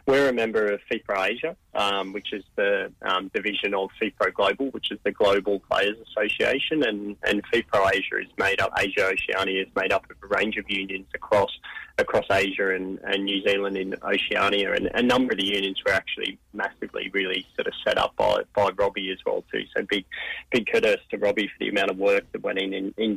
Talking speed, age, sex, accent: 210 wpm, 20-39, male, Australian